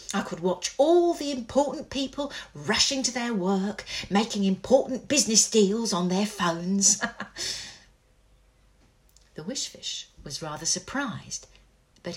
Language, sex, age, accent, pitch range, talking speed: English, female, 50-69, British, 170-260 Hz, 120 wpm